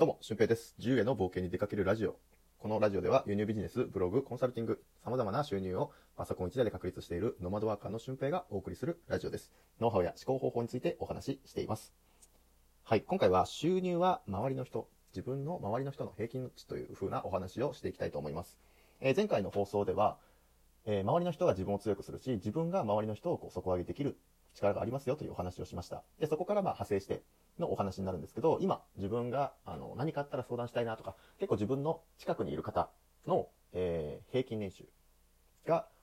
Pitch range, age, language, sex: 95-140 Hz, 30-49, Japanese, male